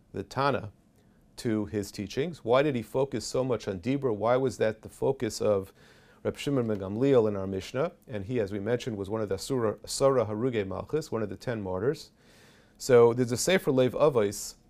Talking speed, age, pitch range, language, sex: 200 wpm, 40-59, 105-130 Hz, English, male